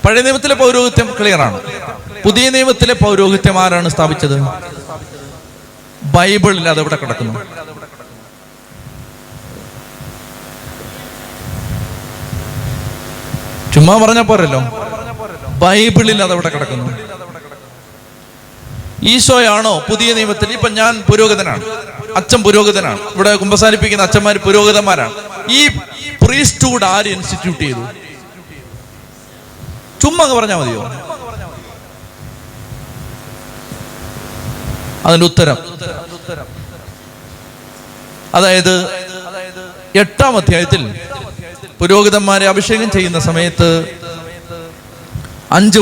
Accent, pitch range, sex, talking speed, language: native, 145-200 Hz, male, 65 wpm, Malayalam